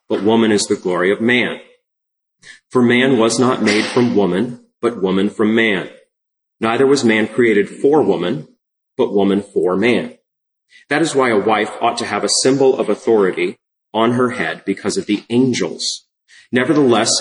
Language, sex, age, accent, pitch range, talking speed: English, male, 30-49, American, 105-130 Hz, 165 wpm